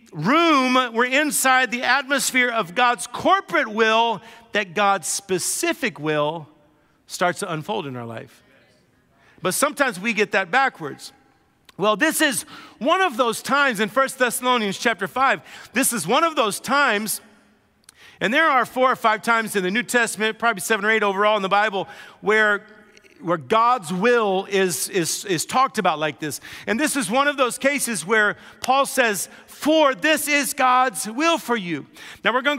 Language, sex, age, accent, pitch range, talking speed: English, male, 50-69, American, 205-260 Hz, 170 wpm